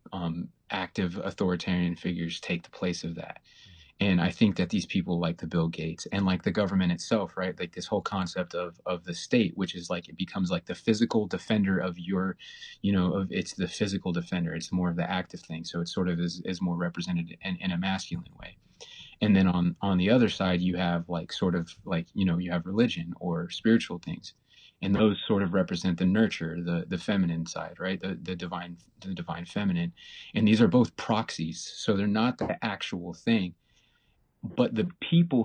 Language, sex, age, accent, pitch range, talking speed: English, male, 30-49, American, 85-105 Hz, 210 wpm